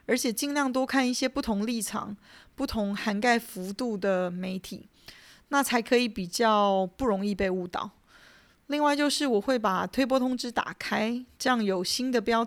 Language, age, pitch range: Chinese, 20-39, 195-250 Hz